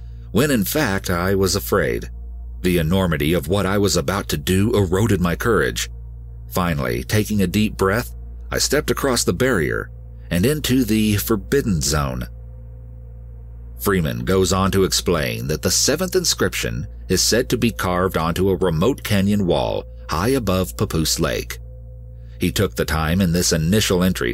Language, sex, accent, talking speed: English, male, American, 160 wpm